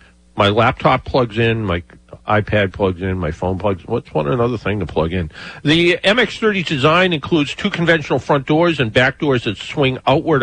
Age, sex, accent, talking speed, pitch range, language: 50-69, male, American, 190 wpm, 105-150 Hz, English